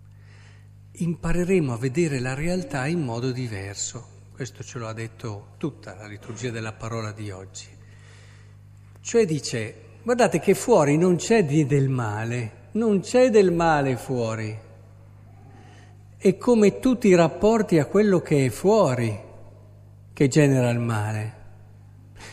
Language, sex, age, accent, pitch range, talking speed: Italian, male, 50-69, native, 105-175 Hz, 130 wpm